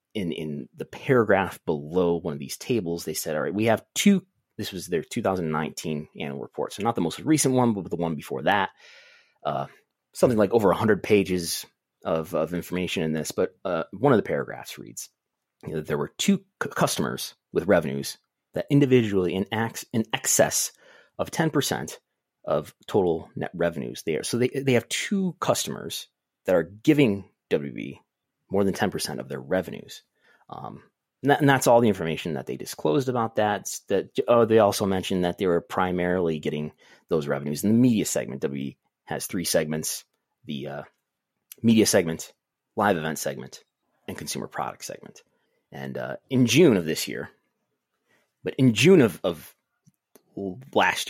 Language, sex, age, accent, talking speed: English, male, 30-49, American, 170 wpm